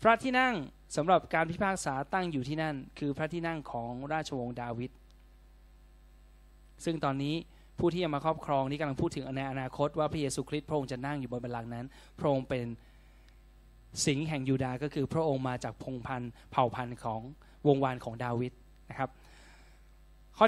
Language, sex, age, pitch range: Thai, male, 20-39, 125-165 Hz